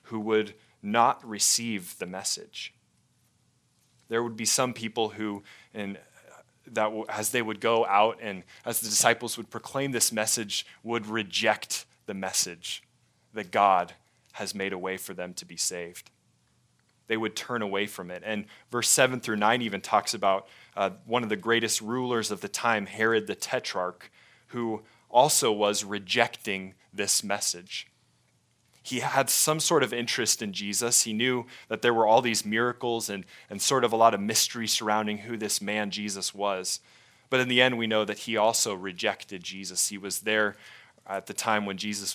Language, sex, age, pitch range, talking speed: English, male, 20-39, 100-120 Hz, 175 wpm